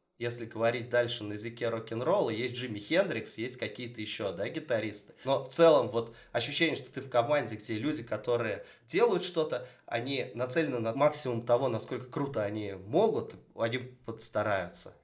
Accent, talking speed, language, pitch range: native, 155 wpm, Russian, 105-130 Hz